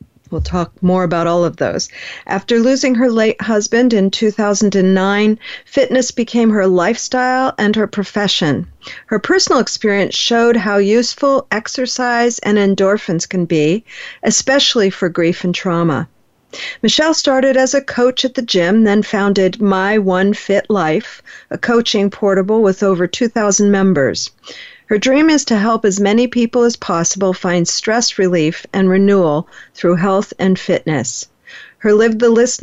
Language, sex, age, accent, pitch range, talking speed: English, female, 50-69, American, 185-235 Hz, 150 wpm